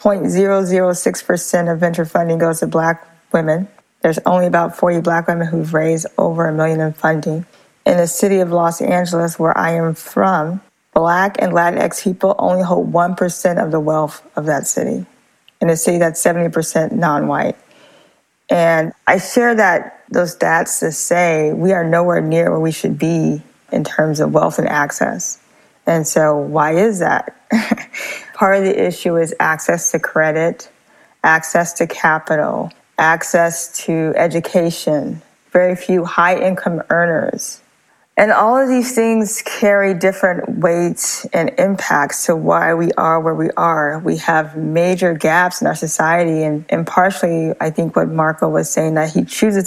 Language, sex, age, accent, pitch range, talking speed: English, female, 20-39, American, 160-190 Hz, 160 wpm